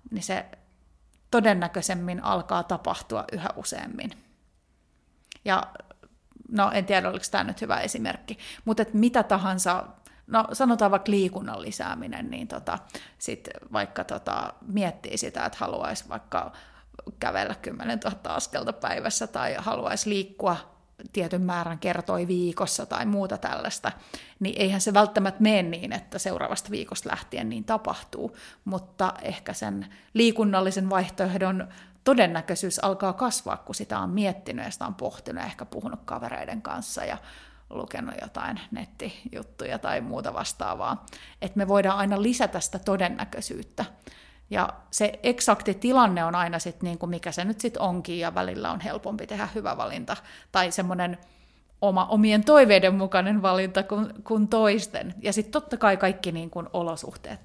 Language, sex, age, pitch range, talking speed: Finnish, female, 30-49, 185-220 Hz, 135 wpm